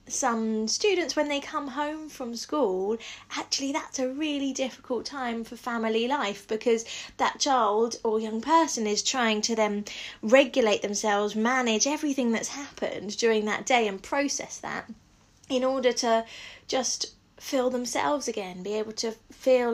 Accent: British